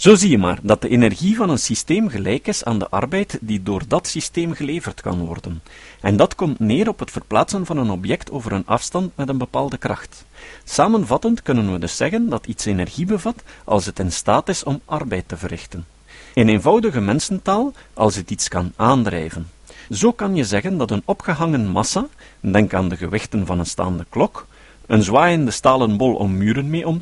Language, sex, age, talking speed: Dutch, male, 50-69, 200 wpm